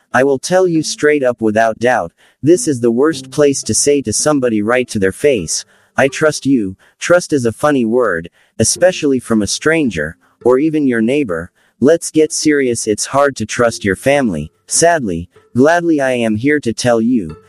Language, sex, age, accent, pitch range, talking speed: English, male, 30-49, American, 110-145 Hz, 185 wpm